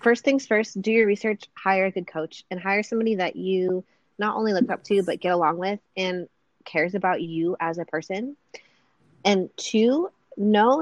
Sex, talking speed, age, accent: female, 190 wpm, 20-39, American